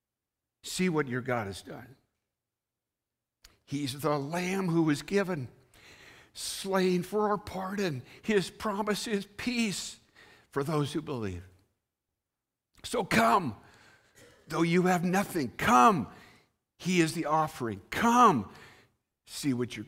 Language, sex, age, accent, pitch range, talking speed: English, male, 60-79, American, 100-150 Hz, 120 wpm